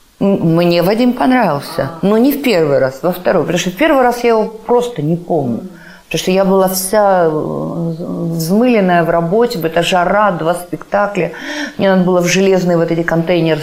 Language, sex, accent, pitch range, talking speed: Russian, female, native, 150-190 Hz, 170 wpm